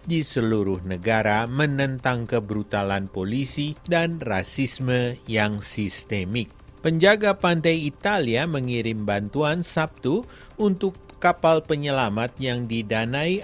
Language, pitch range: Indonesian, 105-145 Hz